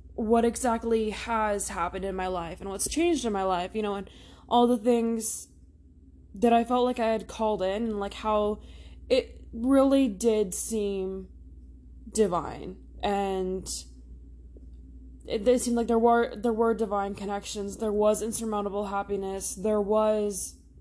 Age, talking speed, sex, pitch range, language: 10-29, 150 wpm, female, 185-240 Hz, English